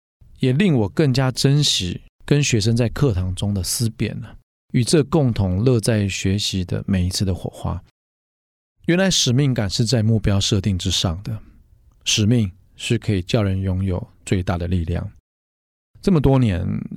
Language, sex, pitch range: Chinese, male, 95-115 Hz